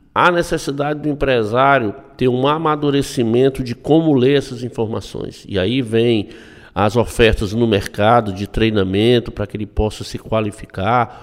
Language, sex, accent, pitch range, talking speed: Portuguese, male, Brazilian, 110-135 Hz, 145 wpm